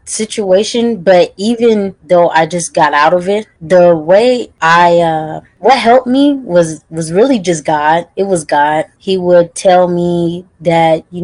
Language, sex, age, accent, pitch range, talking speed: English, female, 20-39, American, 160-190 Hz, 165 wpm